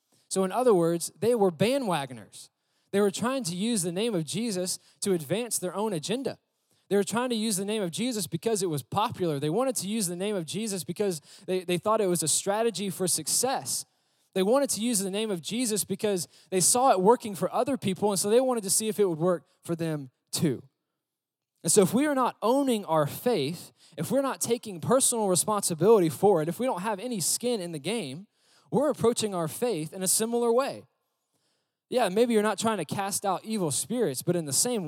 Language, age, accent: English, 20-39, American